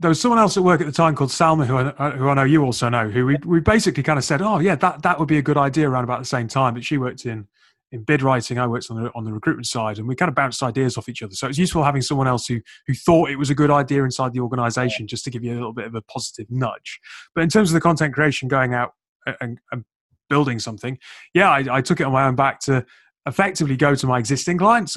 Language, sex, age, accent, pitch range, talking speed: English, male, 30-49, British, 125-150 Hz, 295 wpm